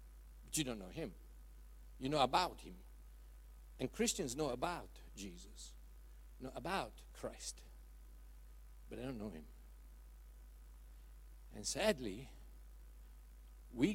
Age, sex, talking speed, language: 60-79, male, 105 wpm, English